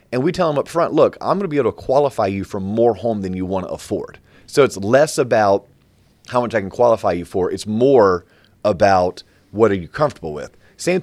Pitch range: 95-120 Hz